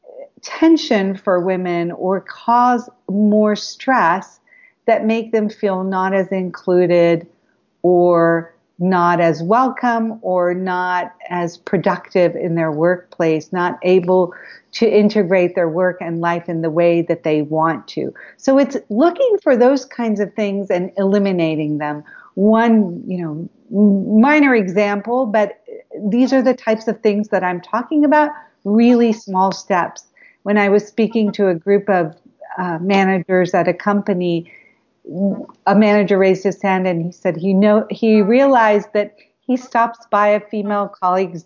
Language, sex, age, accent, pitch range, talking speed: English, female, 50-69, American, 180-220 Hz, 145 wpm